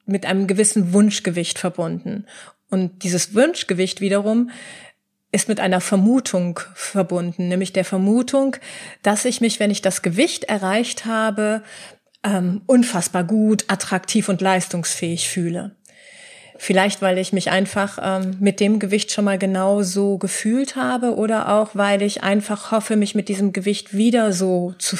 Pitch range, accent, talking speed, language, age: 190-220 Hz, German, 145 wpm, German, 30-49